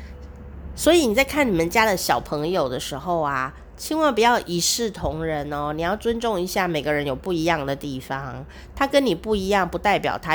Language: Chinese